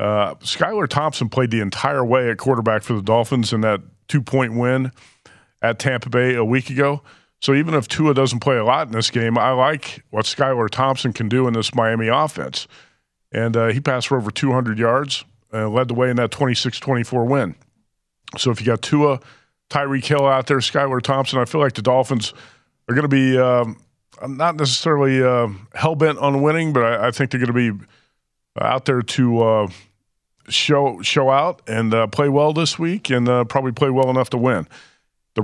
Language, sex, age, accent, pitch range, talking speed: English, male, 40-59, American, 115-140 Hz, 205 wpm